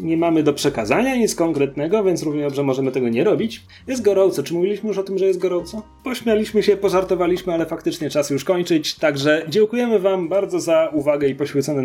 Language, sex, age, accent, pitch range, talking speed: Polish, male, 30-49, native, 130-185 Hz, 195 wpm